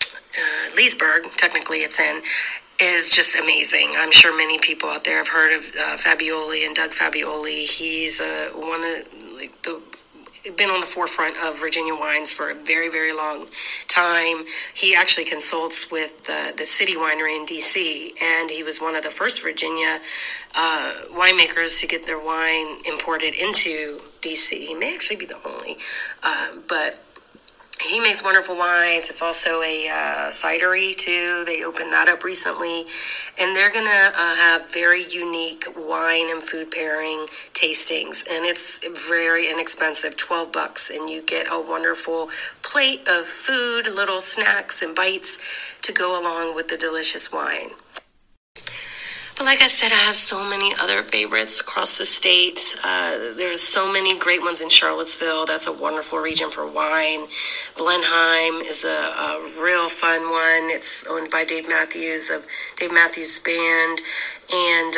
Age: 30-49